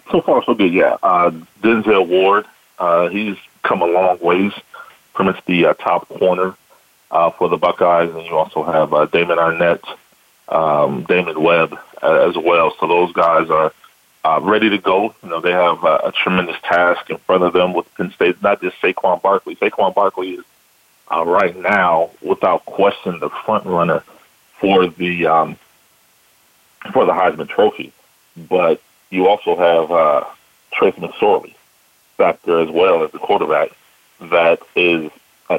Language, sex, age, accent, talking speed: English, male, 40-59, American, 165 wpm